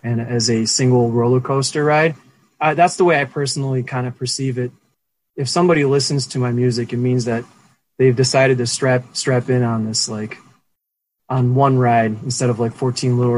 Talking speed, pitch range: 195 wpm, 120-140 Hz